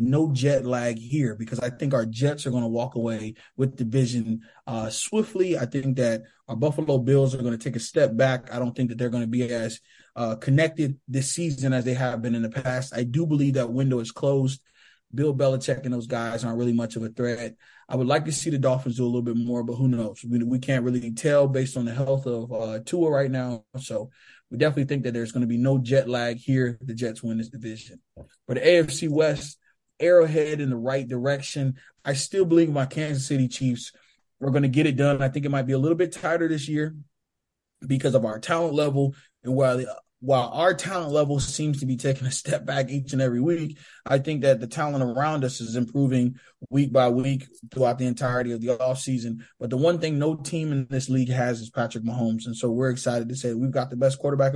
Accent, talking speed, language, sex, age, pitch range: American, 235 wpm, English, male, 20-39, 120-140 Hz